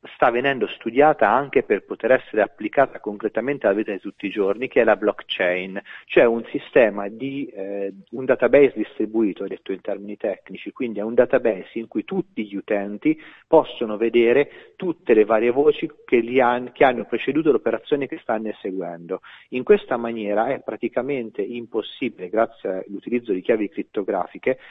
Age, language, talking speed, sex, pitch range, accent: 40-59, Italian, 160 wpm, male, 105-155 Hz, native